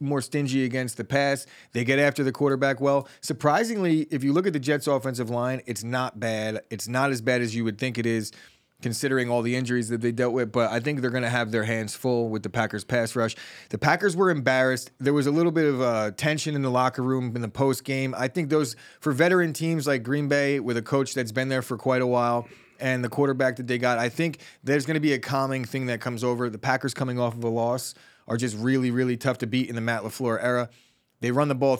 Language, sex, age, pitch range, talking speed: English, male, 20-39, 120-145 Hz, 255 wpm